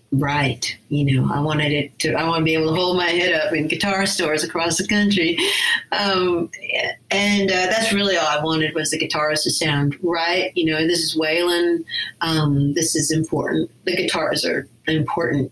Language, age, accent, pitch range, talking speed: English, 40-59, American, 150-185 Hz, 195 wpm